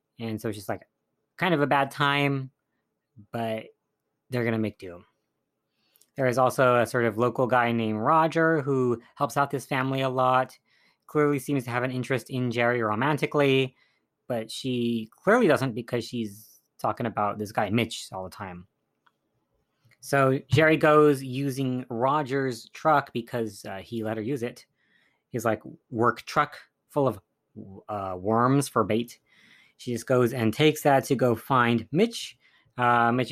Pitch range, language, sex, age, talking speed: 115-135 Hz, English, female, 30-49, 165 wpm